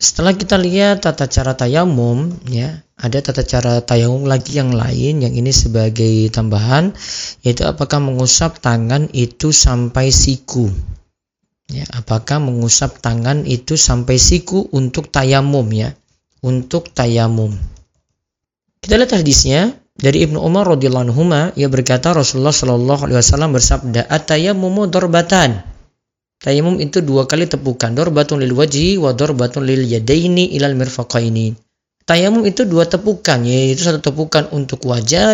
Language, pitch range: Indonesian, 125-165 Hz